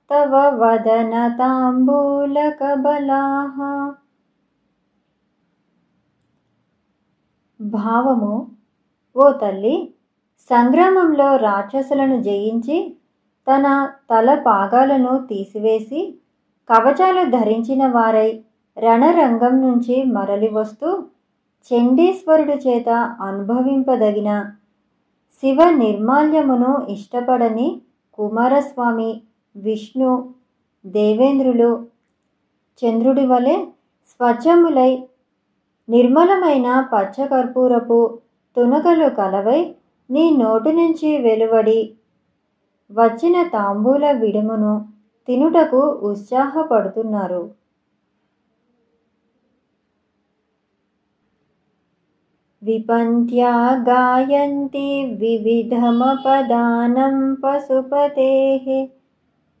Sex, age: male, 20-39